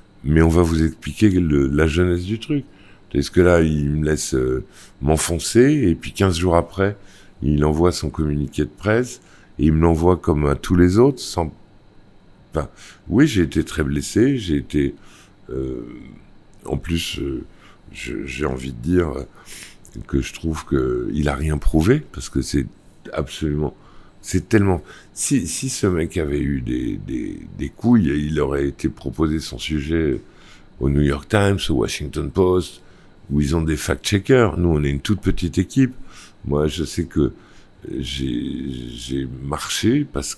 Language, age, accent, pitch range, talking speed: French, 50-69, French, 70-95 Hz, 170 wpm